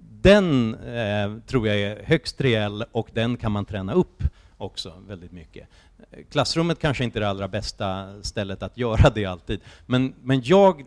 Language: English